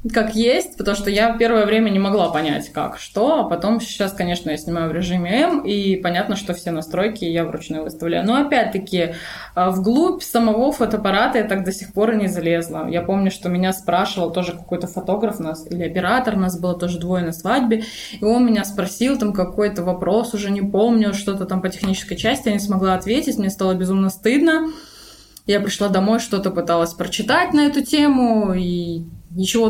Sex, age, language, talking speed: female, 20-39, Russian, 190 wpm